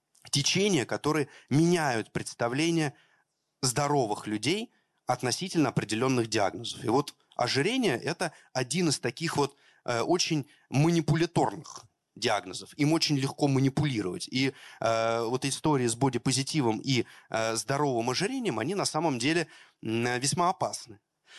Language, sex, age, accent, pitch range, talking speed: Russian, male, 30-49, native, 120-160 Hz, 105 wpm